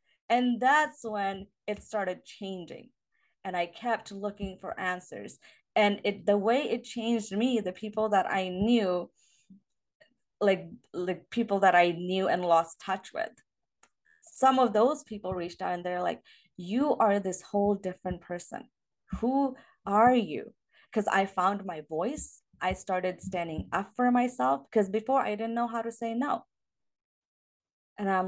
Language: English